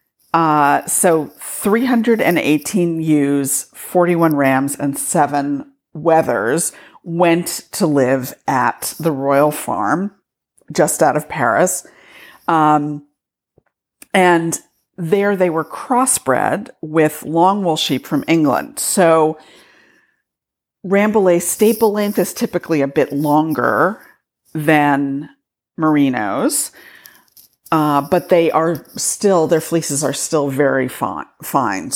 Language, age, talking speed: English, 50-69, 100 wpm